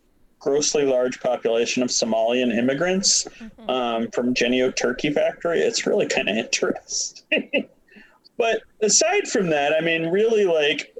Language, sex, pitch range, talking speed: English, male, 125-165 Hz, 130 wpm